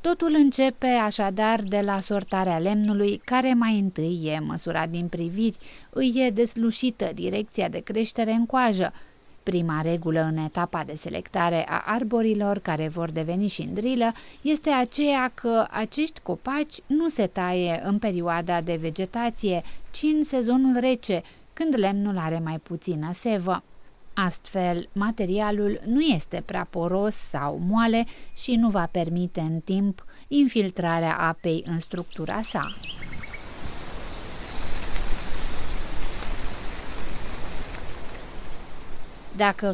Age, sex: 30-49, female